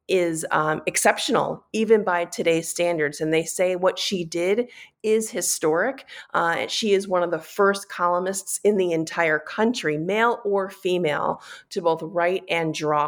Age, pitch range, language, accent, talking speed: 40-59, 170-220 Hz, English, American, 160 wpm